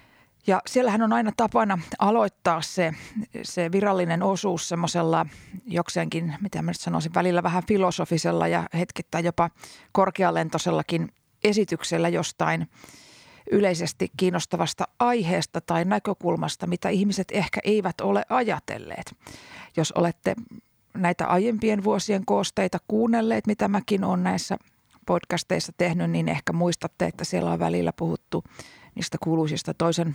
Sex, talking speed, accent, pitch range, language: female, 120 wpm, native, 165-200 Hz, Finnish